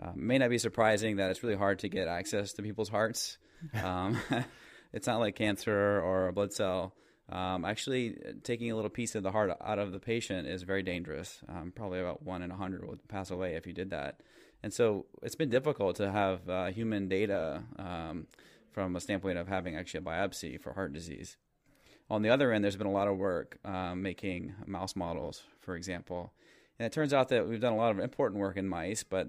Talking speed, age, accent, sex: 220 wpm, 20-39, American, male